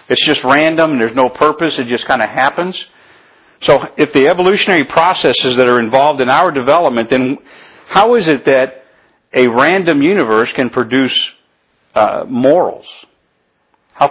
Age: 50-69